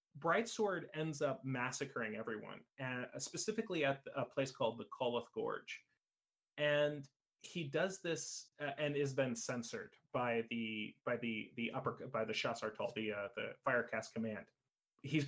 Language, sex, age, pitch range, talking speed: English, male, 30-49, 120-150 Hz, 155 wpm